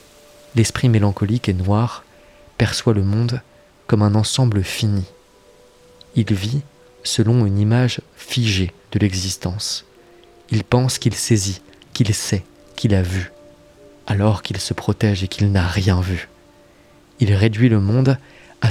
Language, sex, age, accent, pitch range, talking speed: French, male, 20-39, French, 95-115 Hz, 135 wpm